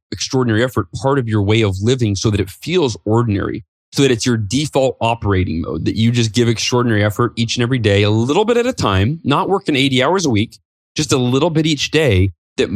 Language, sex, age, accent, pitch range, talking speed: English, male, 20-39, American, 95-120 Hz, 230 wpm